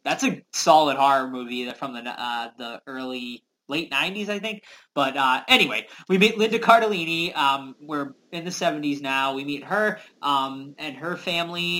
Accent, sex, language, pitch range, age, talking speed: American, male, English, 135-175 Hz, 20-39, 175 wpm